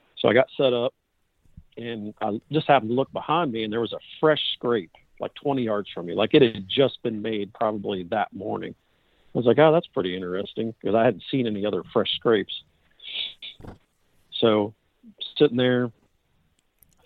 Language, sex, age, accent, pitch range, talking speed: English, male, 50-69, American, 100-125 Hz, 185 wpm